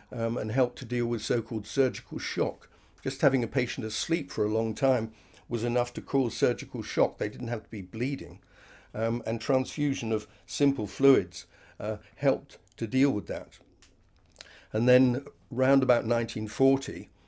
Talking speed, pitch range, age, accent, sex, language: 165 wpm, 110-130 Hz, 60-79, British, male, English